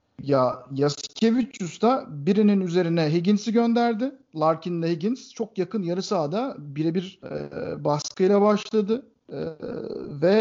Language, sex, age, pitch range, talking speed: Turkish, male, 50-69, 160-230 Hz, 110 wpm